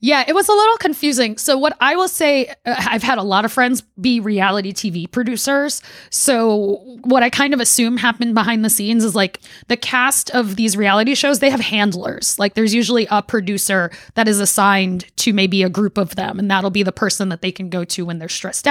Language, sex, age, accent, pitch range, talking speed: English, female, 20-39, American, 195-245 Hz, 220 wpm